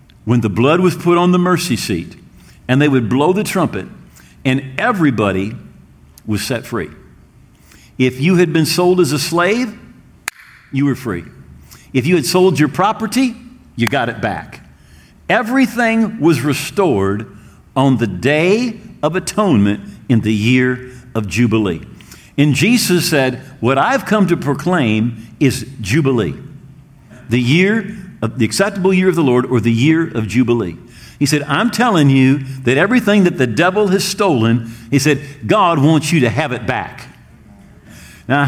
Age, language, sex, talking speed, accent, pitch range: 50-69, English, male, 155 wpm, American, 120-180 Hz